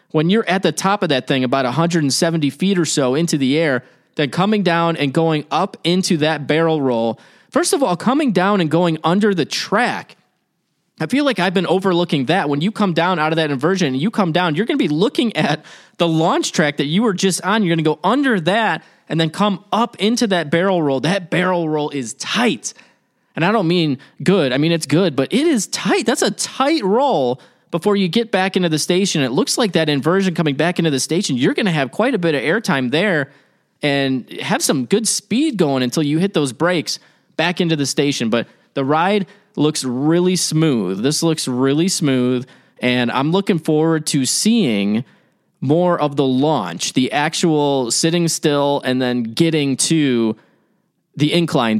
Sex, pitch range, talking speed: male, 145-190 Hz, 205 wpm